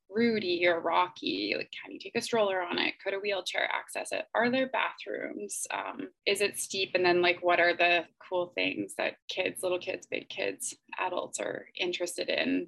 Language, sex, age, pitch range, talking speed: English, female, 20-39, 180-240 Hz, 195 wpm